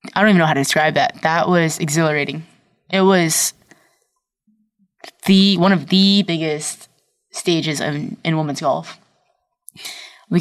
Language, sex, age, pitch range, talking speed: English, female, 20-39, 155-195 Hz, 140 wpm